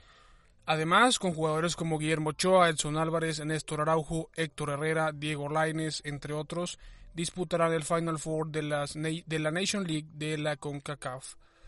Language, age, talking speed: Spanish, 20-39, 150 wpm